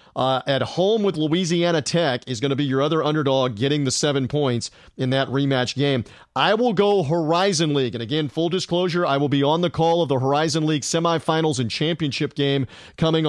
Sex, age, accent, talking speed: male, 40-59, American, 205 wpm